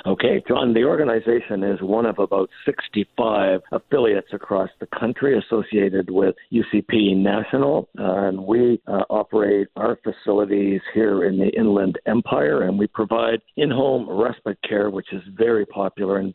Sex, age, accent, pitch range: male, 60-79, American, 95-115 Hz